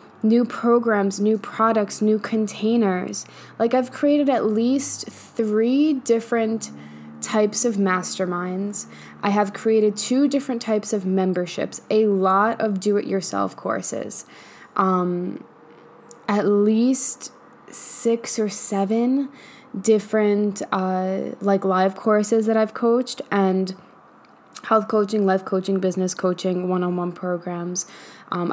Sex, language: female, English